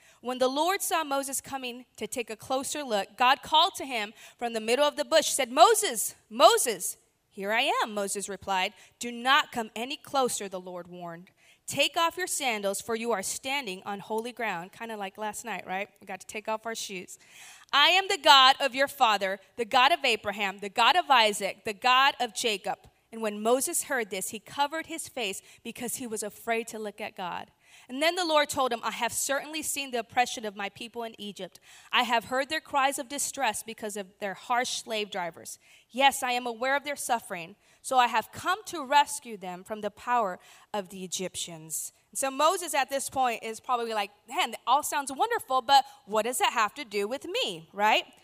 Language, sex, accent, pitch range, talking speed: English, female, American, 205-275 Hz, 210 wpm